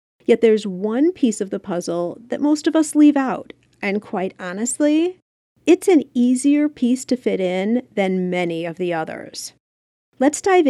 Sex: female